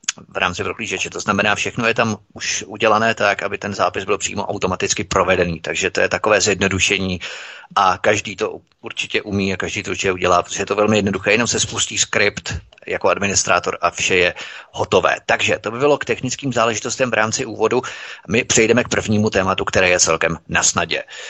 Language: Czech